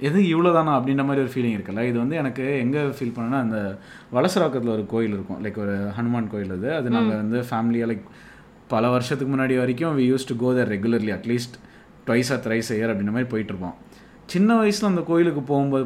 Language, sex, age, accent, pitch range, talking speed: Tamil, male, 30-49, native, 115-180 Hz, 190 wpm